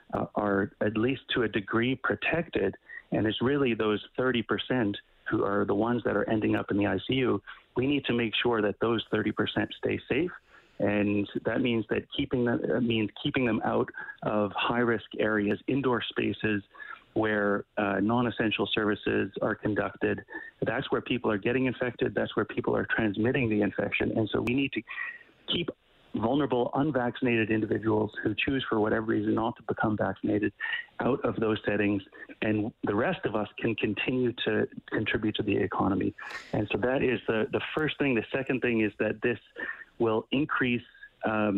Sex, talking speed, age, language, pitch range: male, 165 wpm, 40-59, English, 105-125 Hz